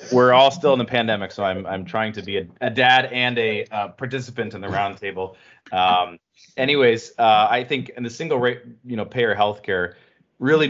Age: 30-49